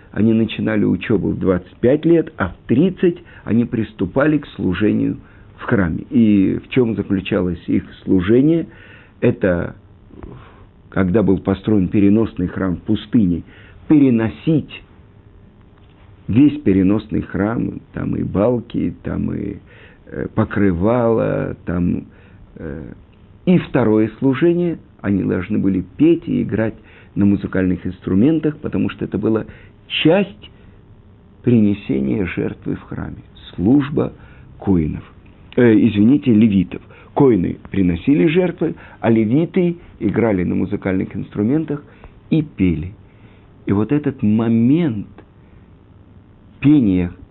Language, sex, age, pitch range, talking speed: Russian, male, 50-69, 100-125 Hz, 105 wpm